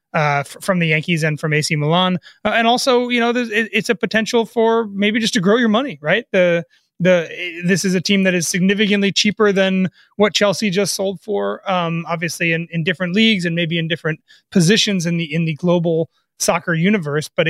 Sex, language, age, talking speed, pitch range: male, English, 30-49, 205 wpm, 160-195 Hz